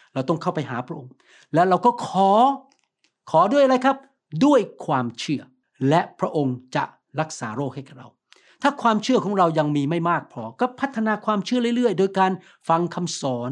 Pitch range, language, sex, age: 155-200 Hz, Thai, male, 60-79